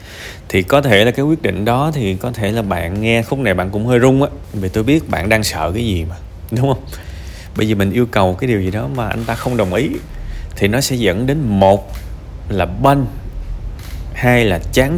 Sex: male